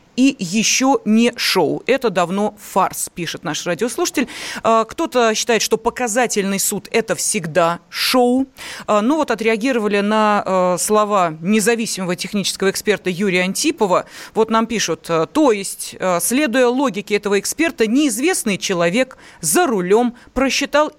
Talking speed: 120 wpm